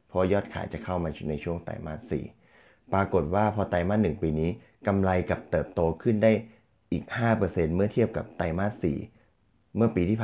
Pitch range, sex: 85-110 Hz, male